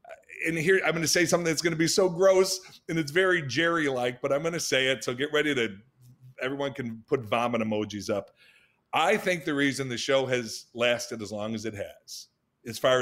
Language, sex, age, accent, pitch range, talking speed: English, male, 50-69, American, 110-145 Hz, 220 wpm